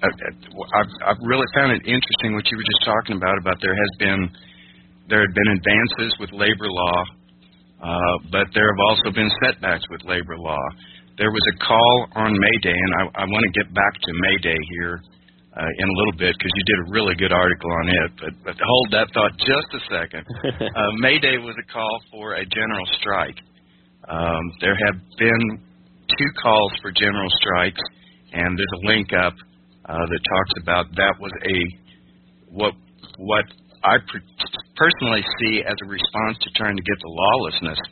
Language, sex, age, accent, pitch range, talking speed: English, male, 50-69, American, 80-105 Hz, 190 wpm